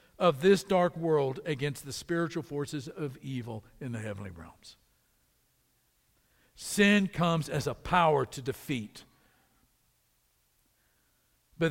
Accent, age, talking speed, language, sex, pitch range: American, 60-79, 115 wpm, English, male, 165-235 Hz